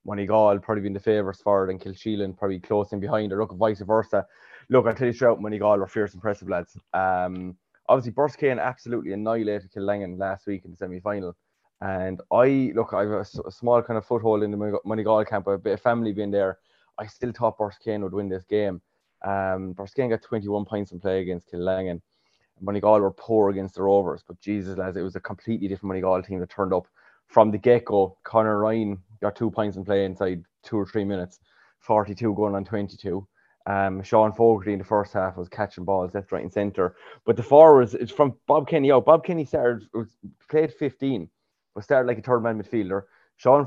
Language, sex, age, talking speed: English, male, 20-39, 210 wpm